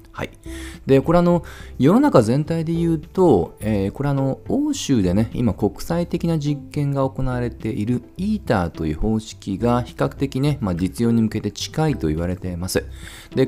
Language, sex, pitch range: Japanese, male, 95-145 Hz